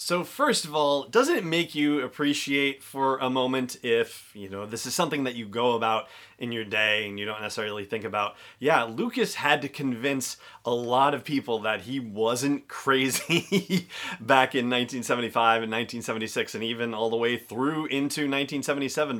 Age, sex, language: 30-49, male, English